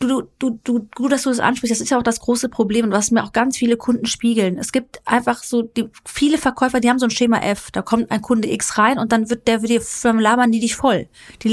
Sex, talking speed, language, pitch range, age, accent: female, 280 wpm, German, 220-265 Hz, 30-49, German